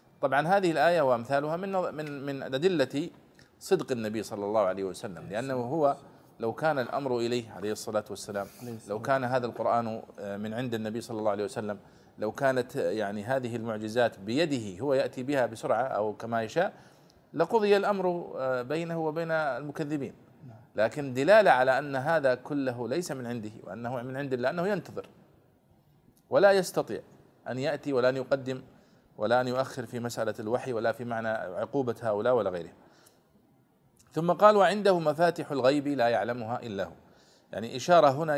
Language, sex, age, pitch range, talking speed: Arabic, male, 40-59, 120-150 Hz, 155 wpm